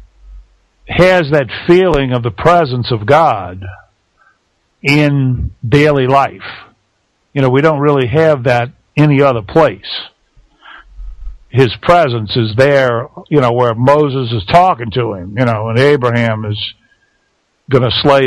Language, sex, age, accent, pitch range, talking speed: English, male, 50-69, American, 115-150 Hz, 135 wpm